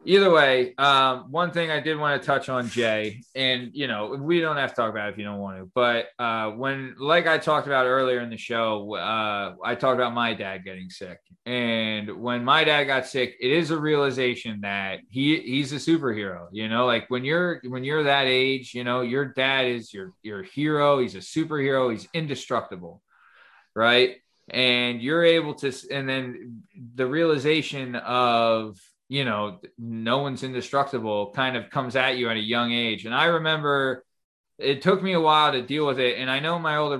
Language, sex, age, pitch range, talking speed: English, male, 20-39, 115-140 Hz, 200 wpm